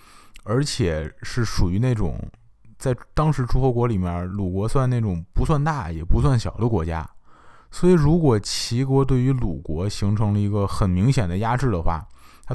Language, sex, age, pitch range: Chinese, male, 20-39, 90-125 Hz